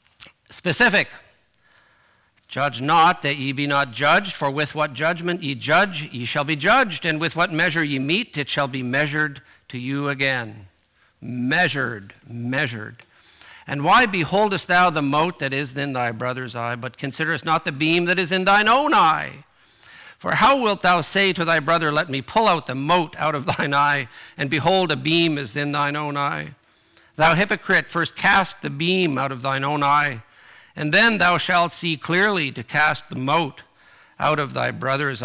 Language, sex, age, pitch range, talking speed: English, male, 50-69, 135-175 Hz, 185 wpm